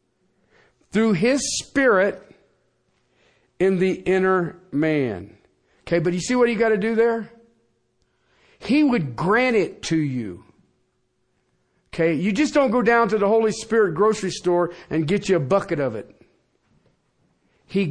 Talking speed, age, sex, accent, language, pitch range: 145 wpm, 50-69, male, American, English, 170-230 Hz